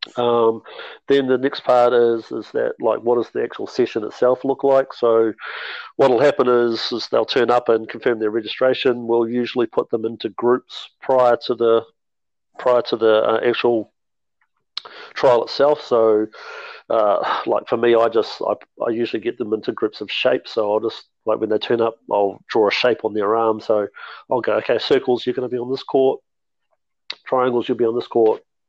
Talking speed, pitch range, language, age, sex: 195 wpm, 115-140 Hz, English, 40-59, male